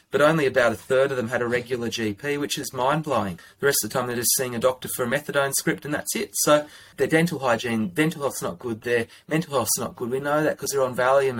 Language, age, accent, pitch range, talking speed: English, 30-49, Australian, 120-150 Hz, 275 wpm